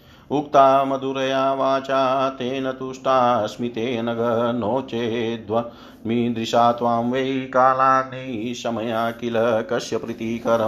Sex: male